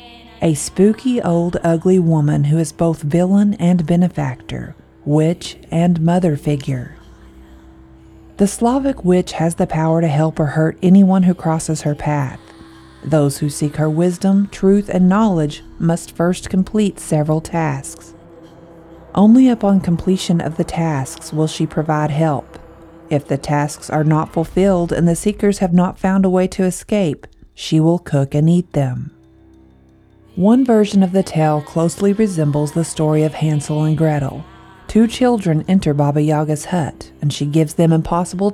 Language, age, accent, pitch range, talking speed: English, 40-59, American, 150-185 Hz, 155 wpm